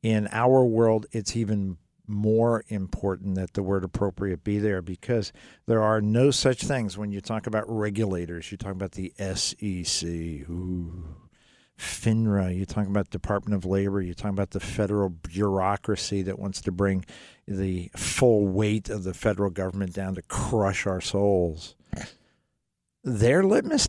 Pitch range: 95-110 Hz